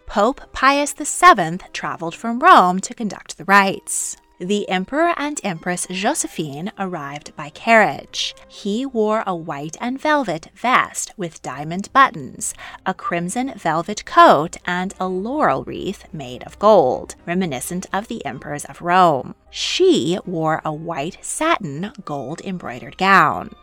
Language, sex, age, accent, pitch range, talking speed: English, female, 20-39, American, 160-245 Hz, 130 wpm